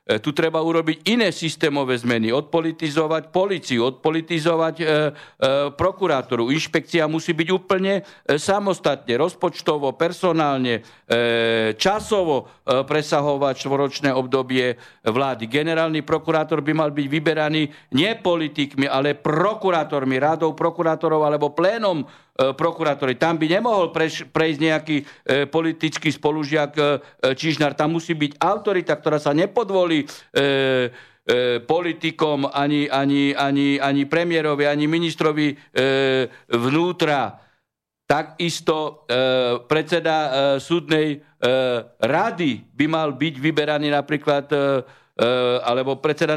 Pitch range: 140-165 Hz